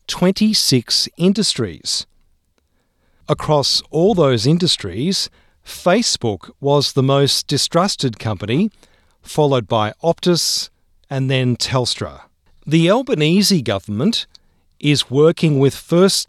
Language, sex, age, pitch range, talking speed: English, male, 40-59, 120-170 Hz, 90 wpm